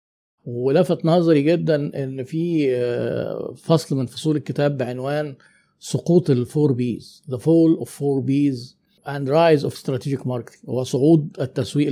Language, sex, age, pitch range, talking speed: Arabic, male, 50-69, 135-165 Hz, 115 wpm